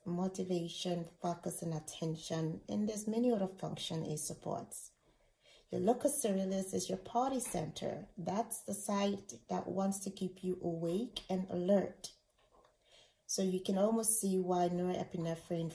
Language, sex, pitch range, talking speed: English, female, 165-195 Hz, 135 wpm